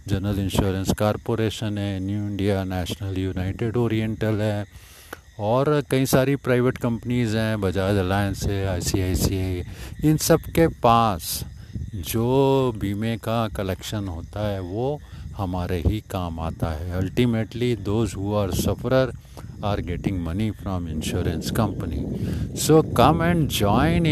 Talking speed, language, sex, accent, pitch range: 125 wpm, Hindi, male, native, 95-120 Hz